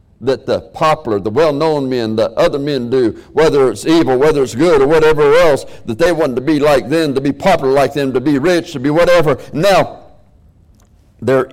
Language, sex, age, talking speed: English, male, 60-79, 205 wpm